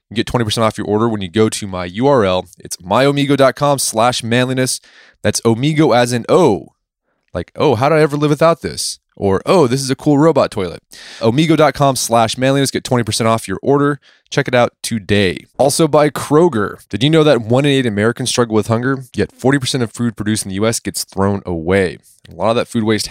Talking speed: 210 wpm